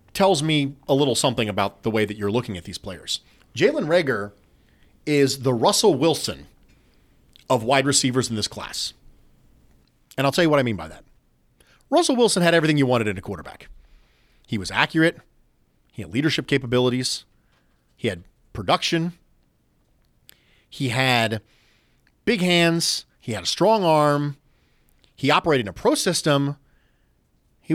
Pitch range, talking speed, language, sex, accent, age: 115-170 Hz, 150 wpm, English, male, American, 40-59